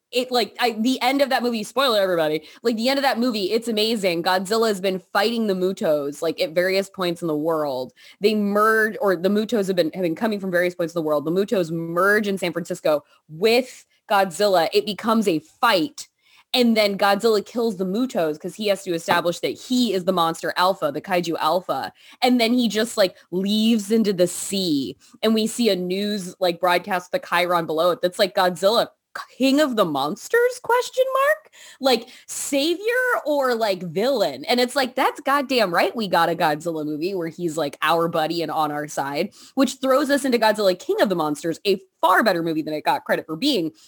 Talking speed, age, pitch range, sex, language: 205 wpm, 20-39, 180-250 Hz, female, English